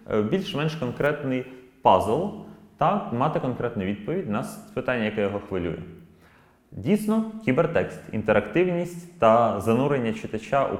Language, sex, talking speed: Ukrainian, male, 105 wpm